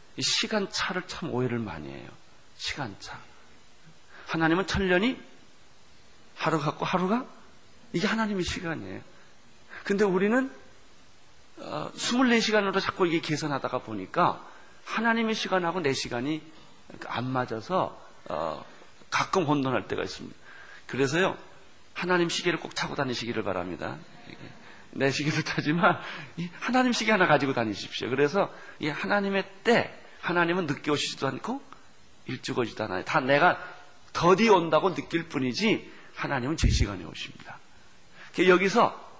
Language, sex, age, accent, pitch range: Korean, male, 40-59, native, 135-185 Hz